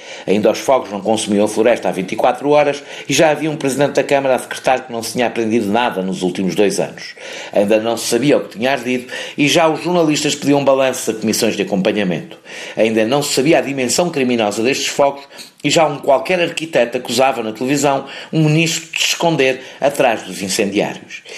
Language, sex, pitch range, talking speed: Portuguese, male, 115-145 Hz, 200 wpm